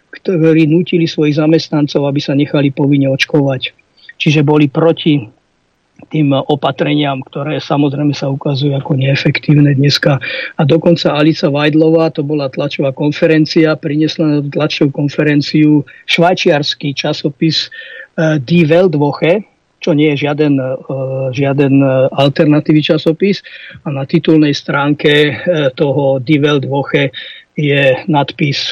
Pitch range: 140-165 Hz